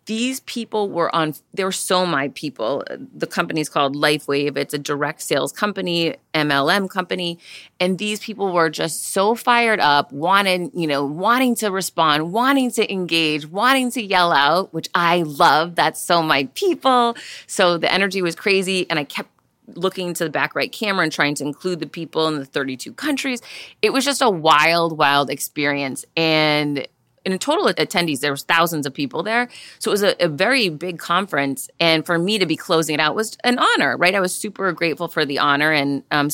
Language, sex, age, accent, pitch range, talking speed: English, female, 30-49, American, 150-195 Hz, 190 wpm